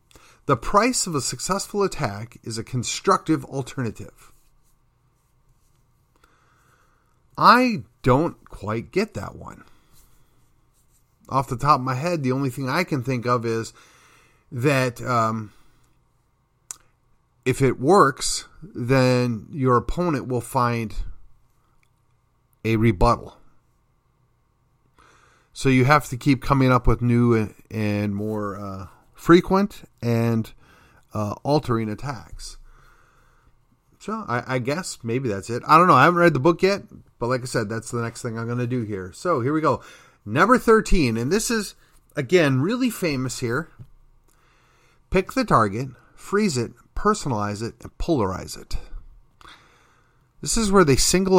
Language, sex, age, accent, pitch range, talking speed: English, male, 40-59, American, 115-145 Hz, 135 wpm